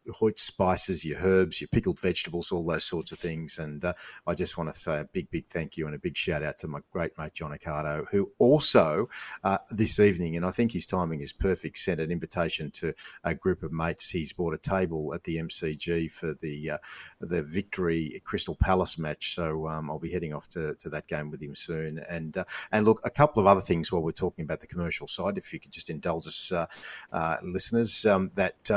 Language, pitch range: English, 80-95 Hz